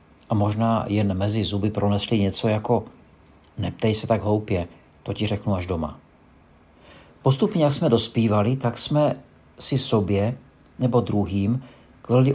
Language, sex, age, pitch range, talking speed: Czech, male, 50-69, 95-125 Hz, 135 wpm